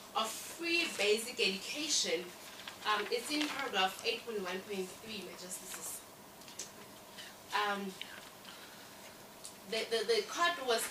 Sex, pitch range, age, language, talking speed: female, 215-290 Hz, 20-39, English, 115 wpm